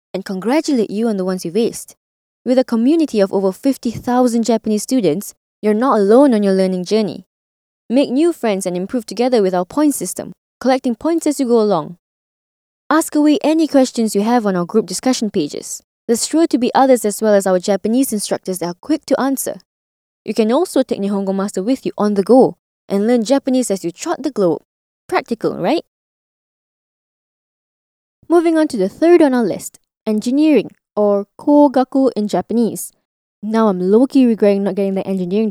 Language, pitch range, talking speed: English, 205-275 Hz, 185 wpm